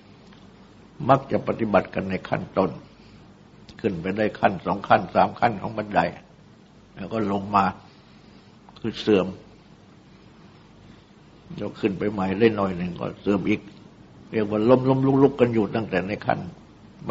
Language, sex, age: Thai, male, 60-79